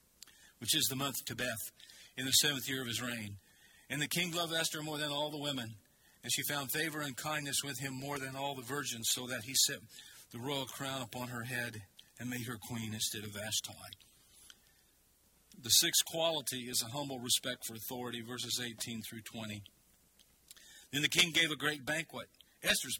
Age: 50-69